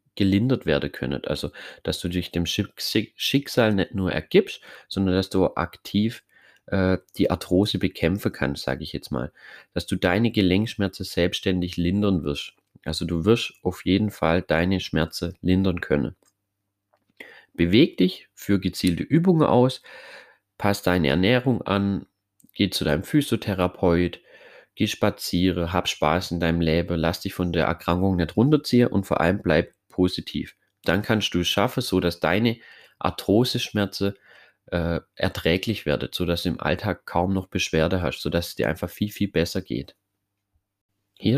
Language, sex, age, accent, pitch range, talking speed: German, male, 30-49, German, 85-100 Hz, 150 wpm